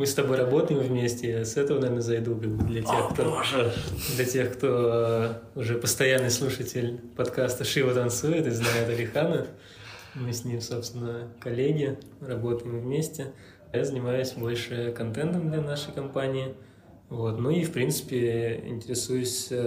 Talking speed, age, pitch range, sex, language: 130 wpm, 20-39, 115-130 Hz, male, Russian